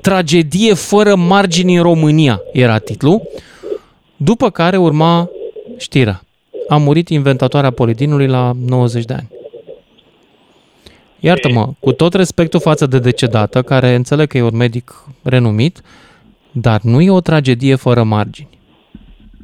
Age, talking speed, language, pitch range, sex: 20-39, 125 wpm, Romanian, 125-180 Hz, male